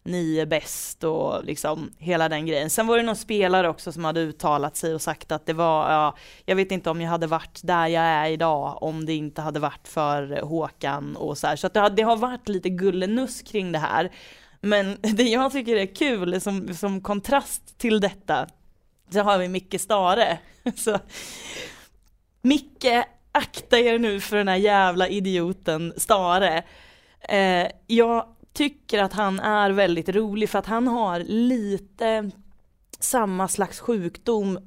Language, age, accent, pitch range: Swedish, 20-39, native, 175-225 Hz